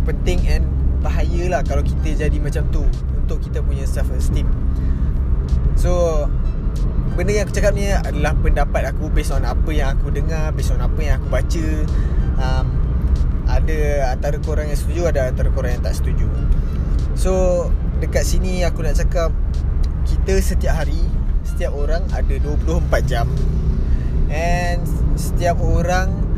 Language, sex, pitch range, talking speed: Malay, male, 65-75 Hz, 145 wpm